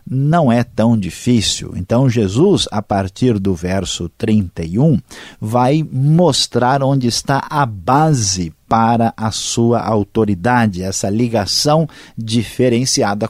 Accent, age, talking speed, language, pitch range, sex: Brazilian, 50-69, 110 wpm, Portuguese, 105-145 Hz, male